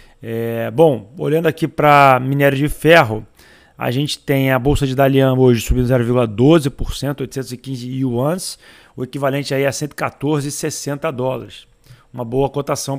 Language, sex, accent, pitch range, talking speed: Portuguese, male, Brazilian, 125-140 Hz, 135 wpm